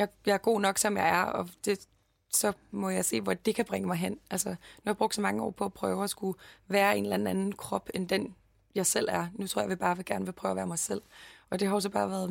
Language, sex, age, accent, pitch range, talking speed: English, female, 20-39, Danish, 165-205 Hz, 300 wpm